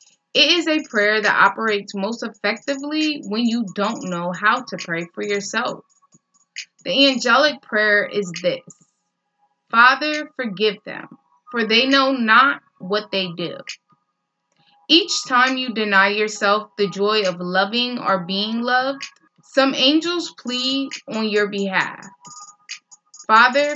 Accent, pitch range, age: American, 200-265 Hz, 20-39